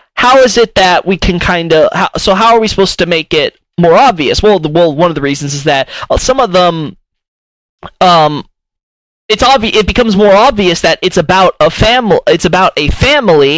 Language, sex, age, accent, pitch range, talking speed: English, male, 20-39, American, 150-190 Hz, 195 wpm